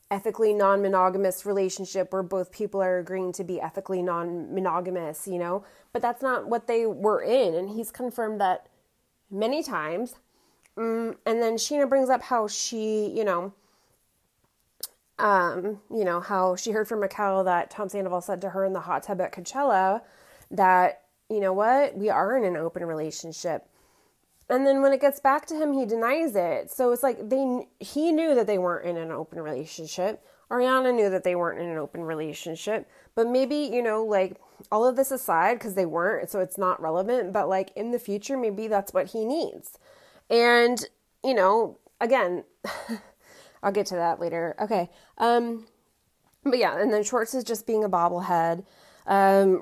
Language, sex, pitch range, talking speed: English, female, 185-235 Hz, 180 wpm